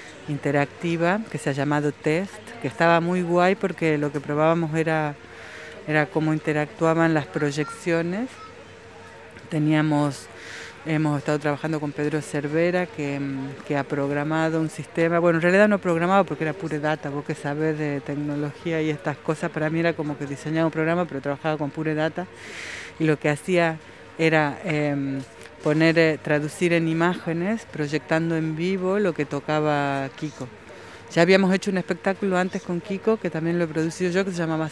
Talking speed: 170 wpm